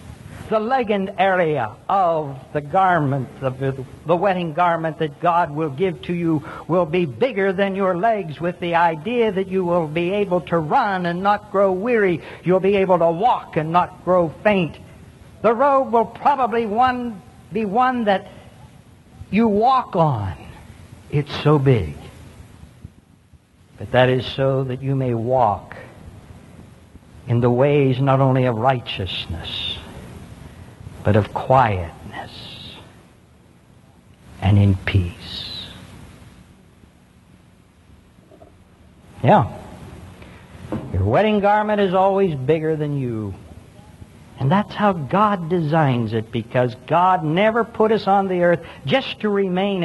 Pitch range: 115-195 Hz